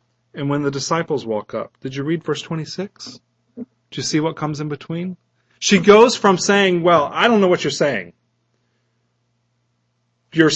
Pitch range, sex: 135-200 Hz, male